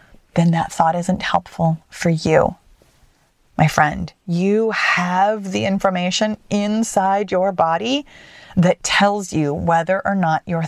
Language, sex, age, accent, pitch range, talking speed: English, female, 30-49, American, 180-265 Hz, 130 wpm